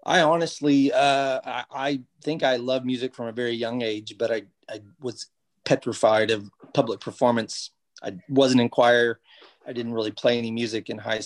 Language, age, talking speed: English, 30-49, 180 wpm